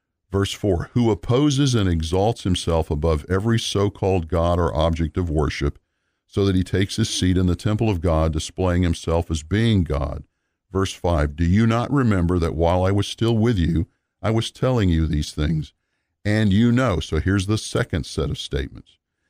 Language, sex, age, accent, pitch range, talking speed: English, male, 50-69, American, 85-110 Hz, 185 wpm